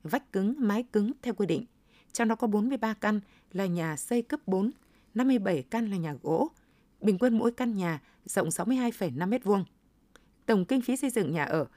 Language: Vietnamese